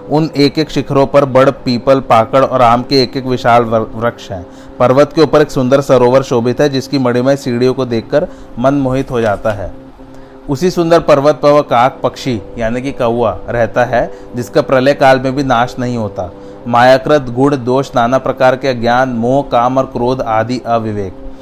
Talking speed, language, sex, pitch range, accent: 80 wpm, Hindi, male, 120-140 Hz, native